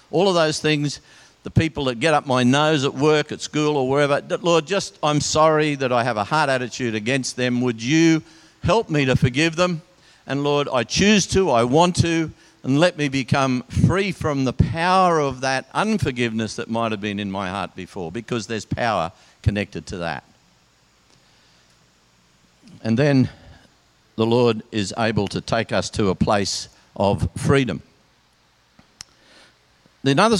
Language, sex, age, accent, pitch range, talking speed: English, male, 50-69, Australian, 105-150 Hz, 165 wpm